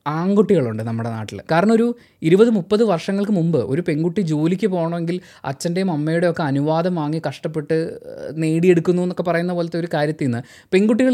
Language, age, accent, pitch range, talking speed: Malayalam, 20-39, native, 145-200 Hz, 145 wpm